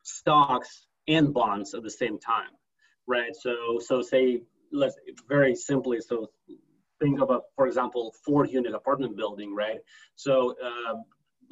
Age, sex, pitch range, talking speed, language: 30-49, male, 120-150 Hz, 135 wpm, English